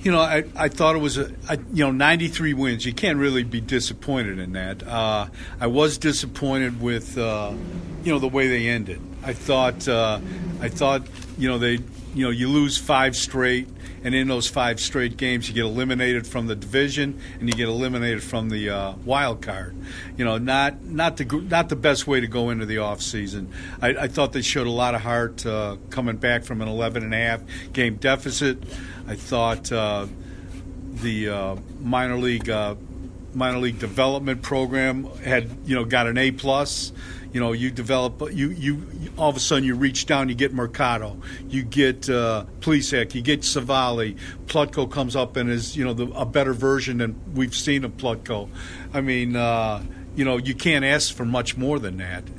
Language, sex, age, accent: English, male, 50-69, American